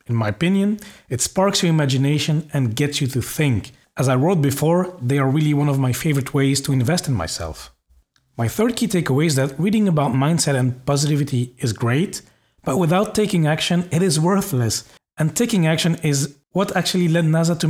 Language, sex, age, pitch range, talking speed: English, male, 40-59, 135-175 Hz, 195 wpm